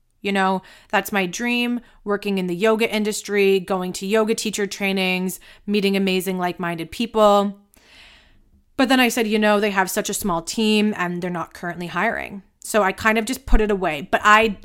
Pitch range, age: 180-215 Hz, 30-49